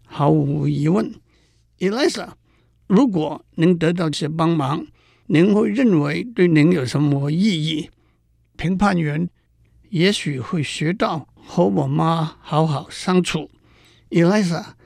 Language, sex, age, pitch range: Chinese, male, 60-79, 145-190 Hz